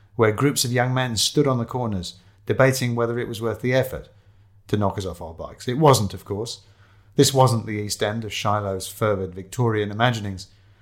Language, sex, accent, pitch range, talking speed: English, male, British, 100-130 Hz, 200 wpm